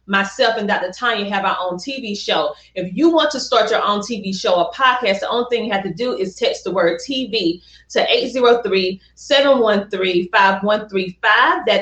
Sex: female